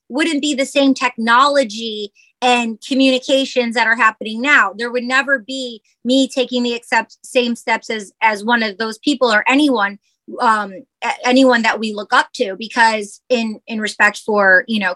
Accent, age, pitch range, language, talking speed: American, 30-49, 215-270 Hz, English, 170 wpm